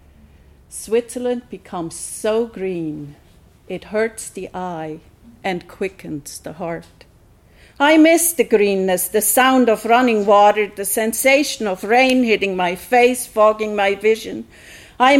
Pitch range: 190-230 Hz